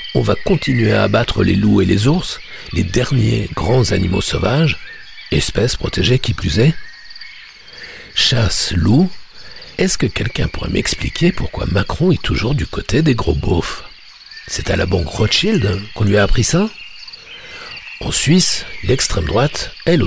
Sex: male